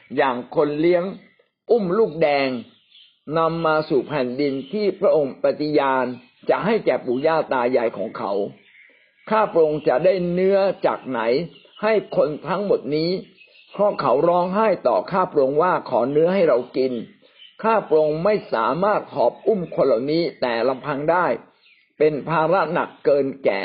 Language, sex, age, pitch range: Thai, male, 60-79, 140-195 Hz